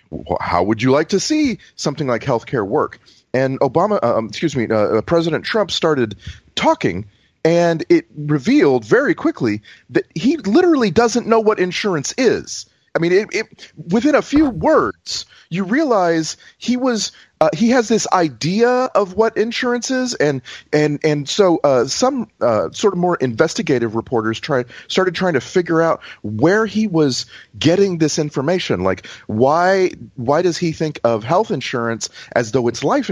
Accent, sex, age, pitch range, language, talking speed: American, male, 30-49, 135-215 Hz, English, 165 wpm